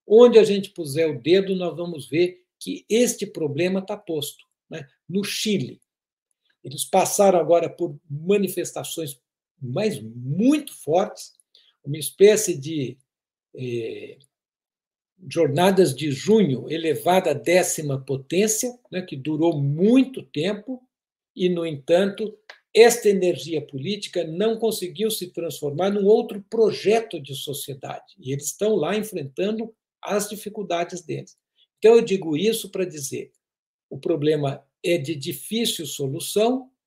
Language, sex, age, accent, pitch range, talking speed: Portuguese, male, 60-79, Brazilian, 150-205 Hz, 125 wpm